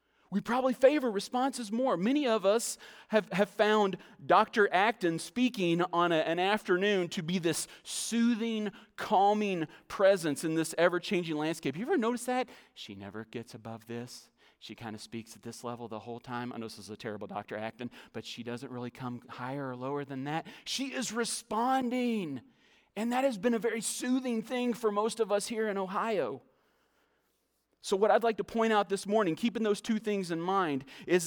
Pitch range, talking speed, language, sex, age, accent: 160-225 Hz, 190 wpm, English, male, 30-49, American